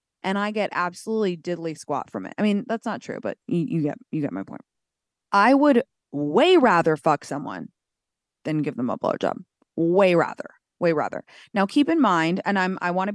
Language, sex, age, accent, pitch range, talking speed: English, female, 20-39, American, 160-200 Hz, 205 wpm